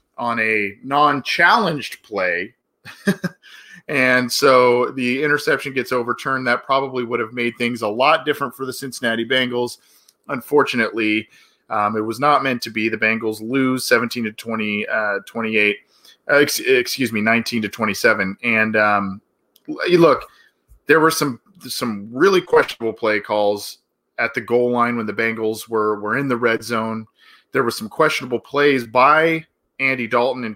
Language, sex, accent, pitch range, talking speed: English, male, American, 110-135 Hz, 155 wpm